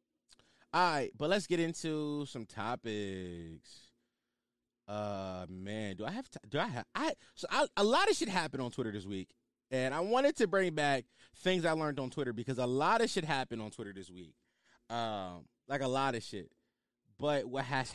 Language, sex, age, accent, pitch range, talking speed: English, male, 20-39, American, 100-150 Hz, 195 wpm